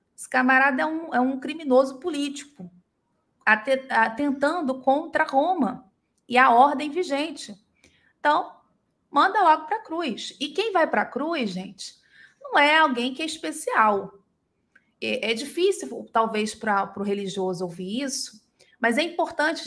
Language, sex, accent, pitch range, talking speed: Portuguese, female, Brazilian, 225-295 Hz, 135 wpm